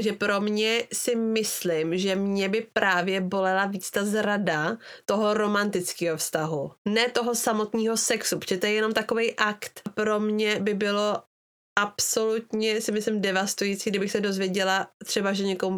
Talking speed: 150 wpm